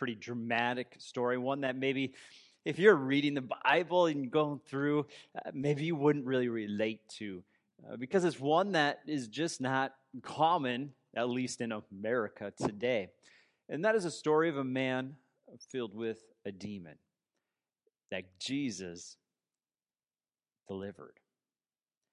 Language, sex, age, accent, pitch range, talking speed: English, male, 30-49, American, 110-140 Hz, 135 wpm